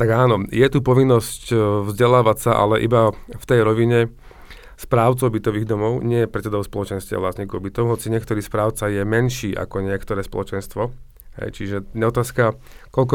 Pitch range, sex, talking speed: 105-125 Hz, male, 150 wpm